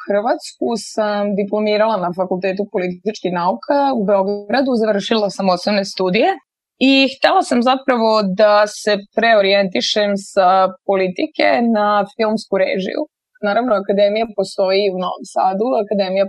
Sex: female